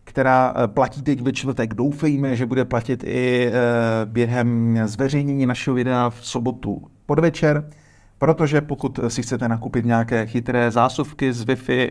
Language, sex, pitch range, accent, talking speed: Czech, male, 110-130 Hz, native, 140 wpm